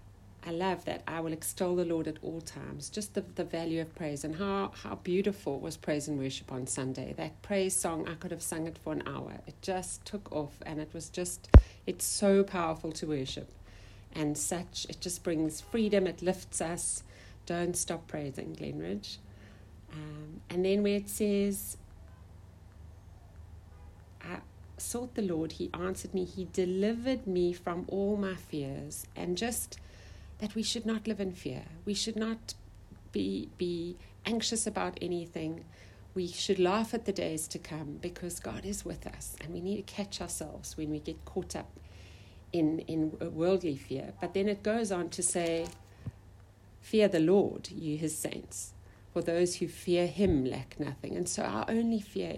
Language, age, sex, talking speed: English, 60-79, female, 175 wpm